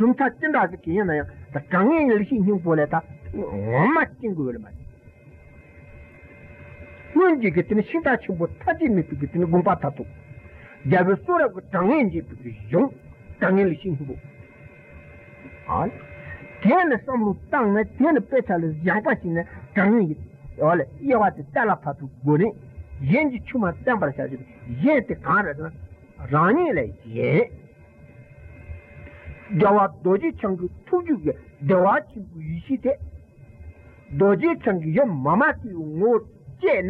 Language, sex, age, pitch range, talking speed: Italian, male, 50-69, 145-230 Hz, 100 wpm